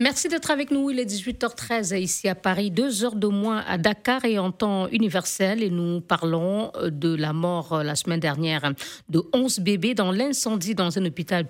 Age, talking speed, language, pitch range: 50-69, 195 wpm, French, 165-220 Hz